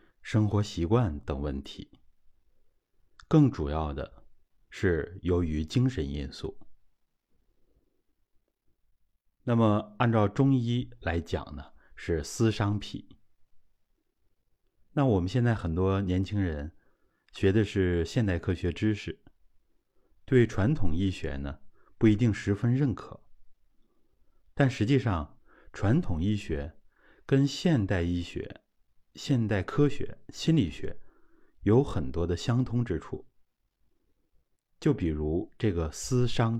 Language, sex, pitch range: Chinese, male, 80-115 Hz